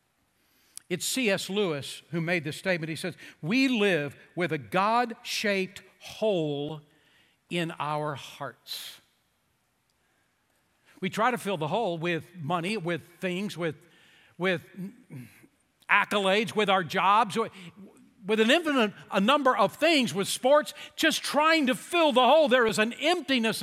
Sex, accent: male, American